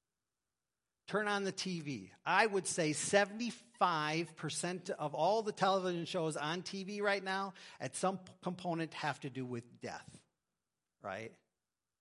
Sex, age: male, 40-59